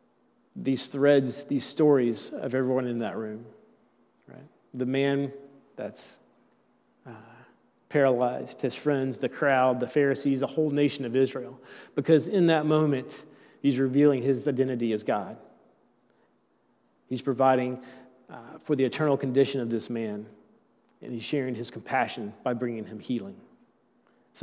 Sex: male